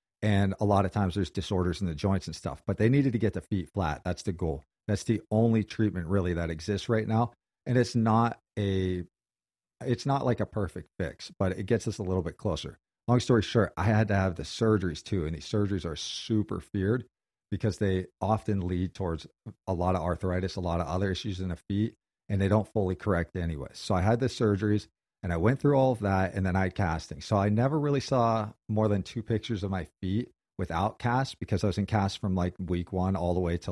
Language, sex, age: English, male, 40-59